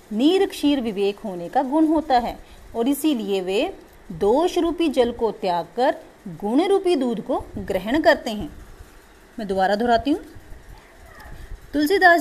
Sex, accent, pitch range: female, native, 215-315 Hz